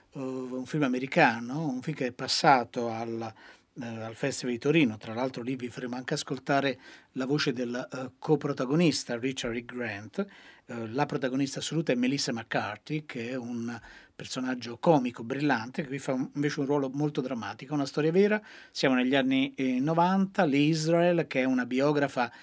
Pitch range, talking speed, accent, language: 130-160 Hz, 170 wpm, native, Italian